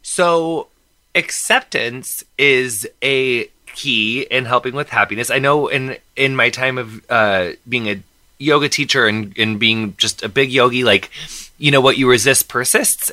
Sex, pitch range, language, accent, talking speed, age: male, 120-150 Hz, English, American, 160 wpm, 20-39